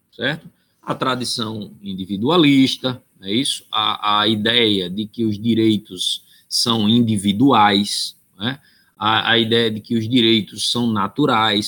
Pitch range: 115-160 Hz